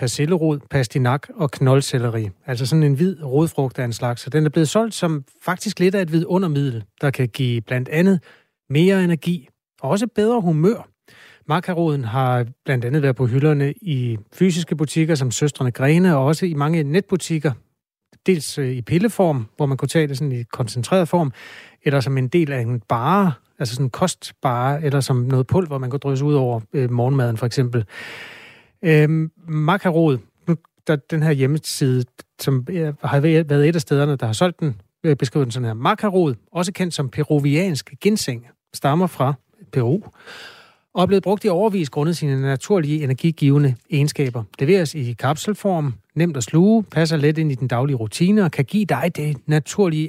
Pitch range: 130-175 Hz